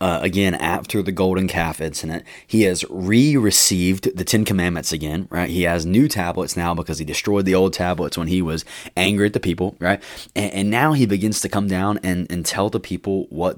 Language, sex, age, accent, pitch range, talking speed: English, male, 20-39, American, 85-100 Hz, 215 wpm